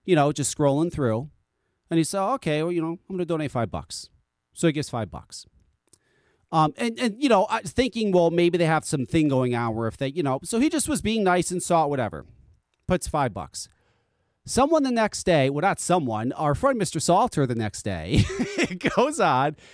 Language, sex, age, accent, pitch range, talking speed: English, male, 40-59, American, 135-210 Hz, 220 wpm